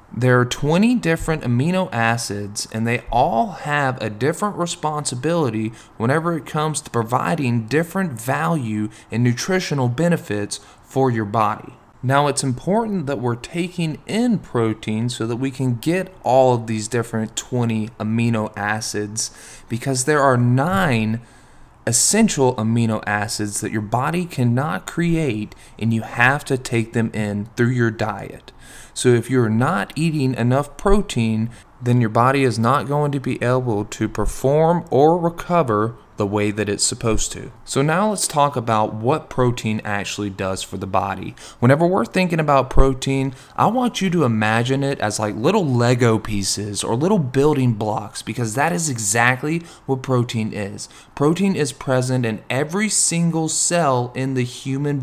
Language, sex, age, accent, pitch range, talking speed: English, male, 20-39, American, 110-150 Hz, 155 wpm